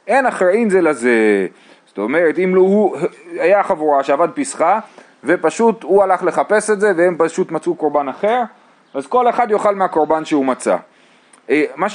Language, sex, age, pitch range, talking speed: Hebrew, male, 30-49, 150-205 Hz, 160 wpm